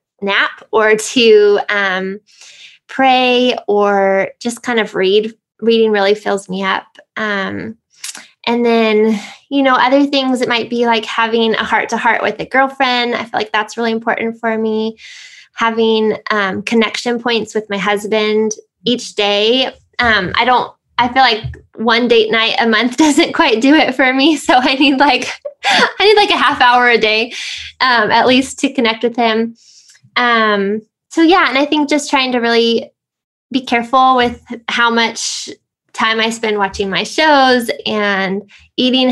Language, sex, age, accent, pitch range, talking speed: English, female, 10-29, American, 215-265 Hz, 165 wpm